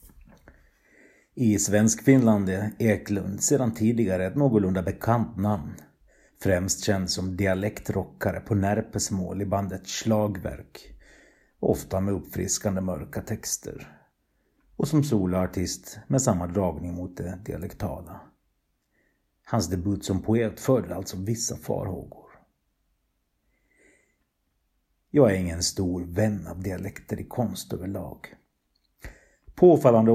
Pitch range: 95-110 Hz